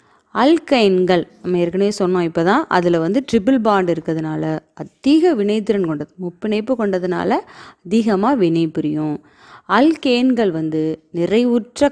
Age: 20-39